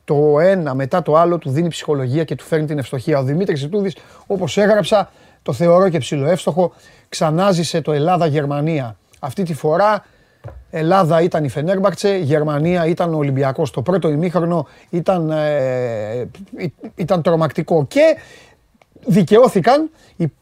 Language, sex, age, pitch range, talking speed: Greek, male, 30-49, 150-210 Hz, 130 wpm